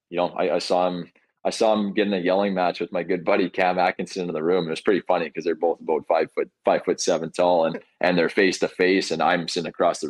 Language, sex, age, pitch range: English, male, 20-39, 80-95 Hz